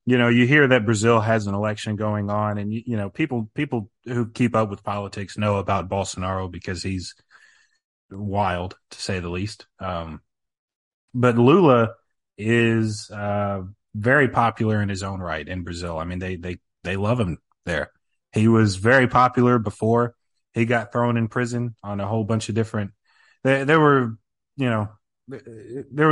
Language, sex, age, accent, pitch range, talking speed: English, male, 30-49, American, 105-120 Hz, 170 wpm